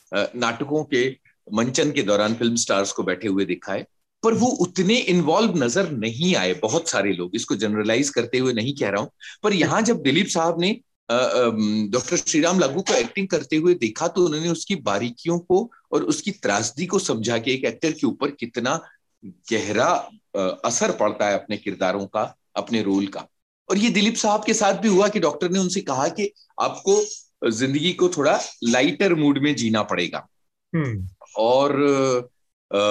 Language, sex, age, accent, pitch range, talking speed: Hindi, male, 40-59, native, 110-180 Hz, 175 wpm